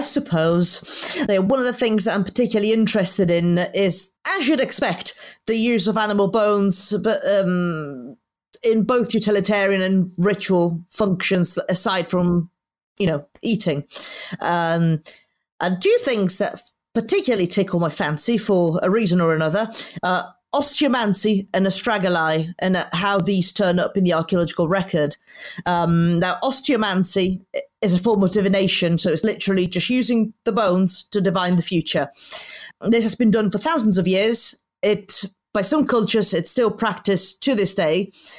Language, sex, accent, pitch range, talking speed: English, female, British, 180-220 Hz, 155 wpm